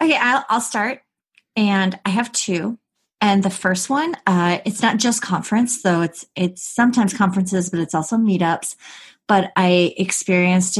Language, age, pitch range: English, 30-49, 180-230 Hz